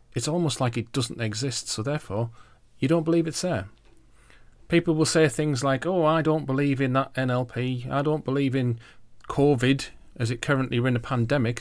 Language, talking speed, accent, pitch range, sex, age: English, 190 wpm, British, 115-145 Hz, male, 40-59